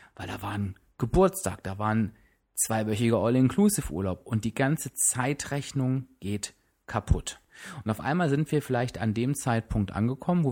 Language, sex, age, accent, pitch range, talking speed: German, male, 30-49, German, 100-130 Hz, 150 wpm